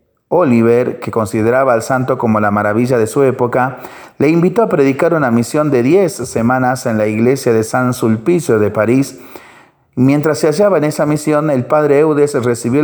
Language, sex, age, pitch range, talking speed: Spanish, male, 40-59, 115-140 Hz, 180 wpm